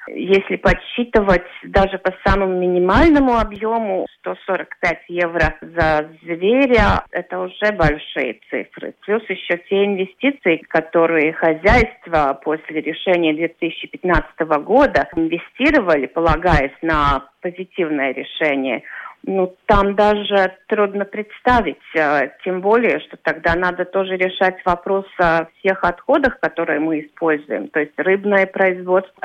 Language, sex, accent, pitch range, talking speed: Russian, female, native, 165-205 Hz, 115 wpm